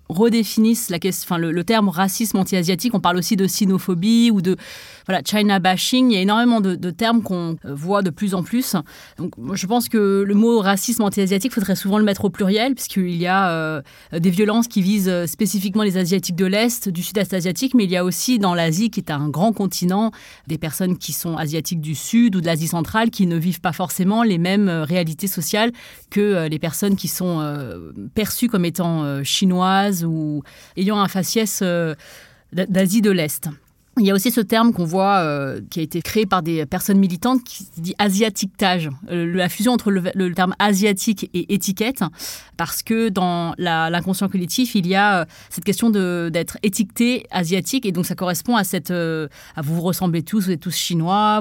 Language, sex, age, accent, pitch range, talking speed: French, female, 30-49, French, 170-210 Hz, 210 wpm